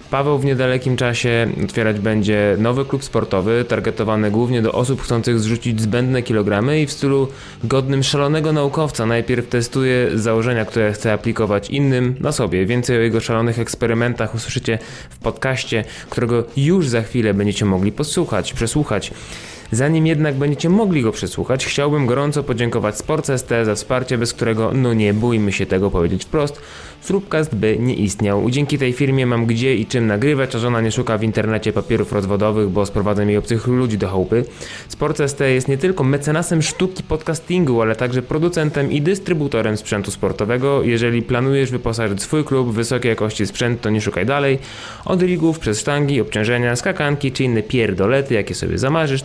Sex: male